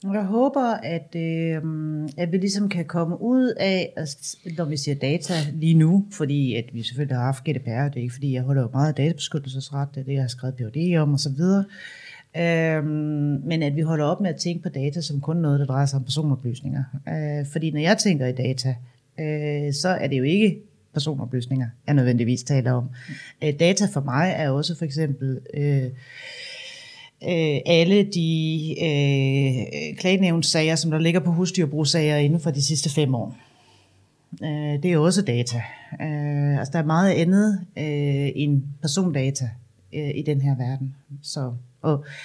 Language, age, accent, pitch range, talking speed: Danish, 30-49, native, 135-165 Hz, 170 wpm